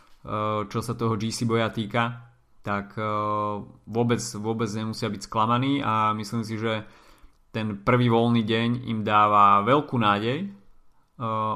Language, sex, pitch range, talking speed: Slovak, male, 105-120 Hz, 135 wpm